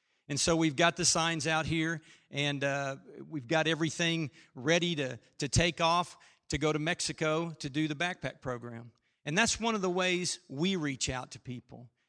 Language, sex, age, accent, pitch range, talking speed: English, male, 50-69, American, 145-180 Hz, 190 wpm